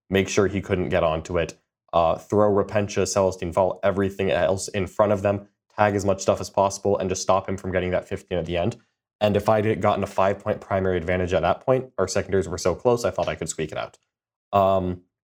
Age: 20-39